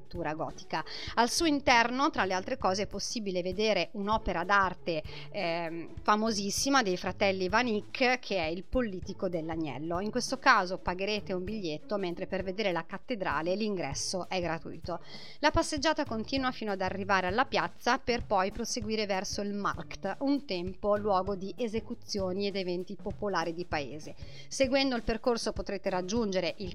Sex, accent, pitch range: female, native, 185-240 Hz